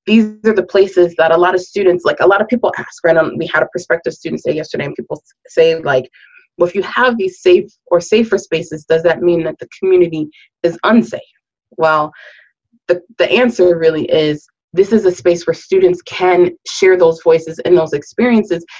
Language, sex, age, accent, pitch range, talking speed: English, female, 20-39, American, 170-225 Hz, 200 wpm